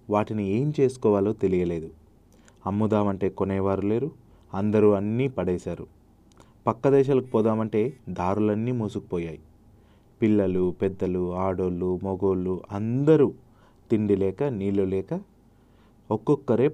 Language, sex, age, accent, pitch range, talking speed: Telugu, male, 30-49, native, 95-110 Hz, 90 wpm